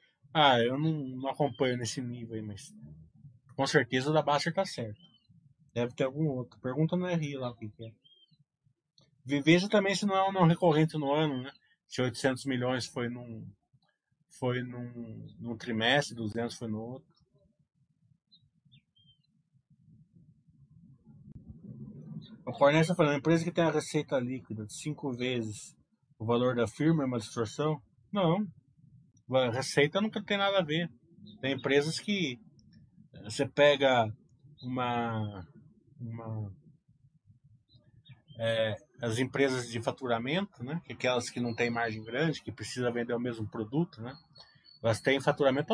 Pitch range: 120-155 Hz